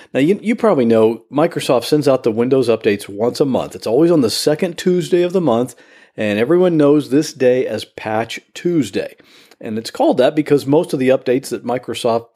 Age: 50-69